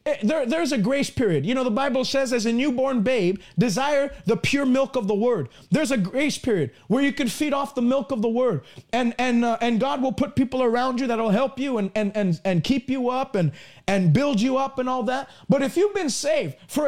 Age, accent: 40-59, American